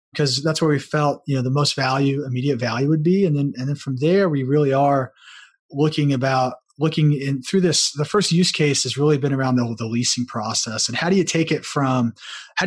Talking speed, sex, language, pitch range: 230 wpm, male, English, 135-165 Hz